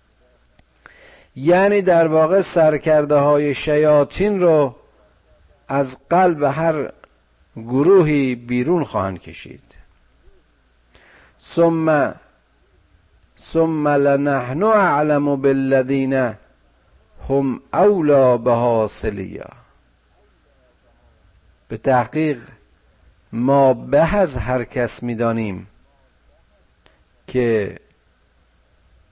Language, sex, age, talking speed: Persian, male, 50-69, 65 wpm